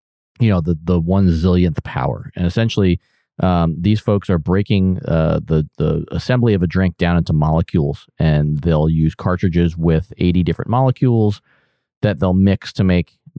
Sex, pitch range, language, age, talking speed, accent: male, 80-105 Hz, English, 30-49, 165 wpm, American